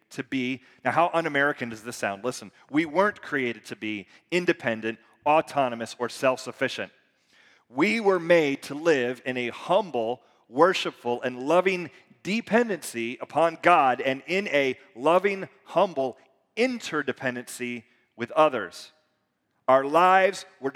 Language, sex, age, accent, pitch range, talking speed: English, male, 30-49, American, 115-160 Hz, 125 wpm